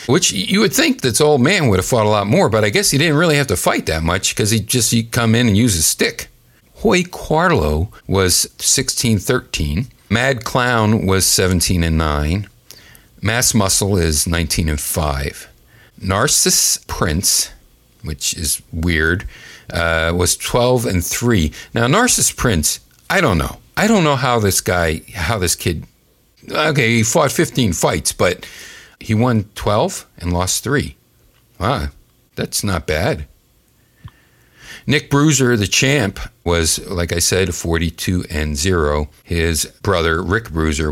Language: English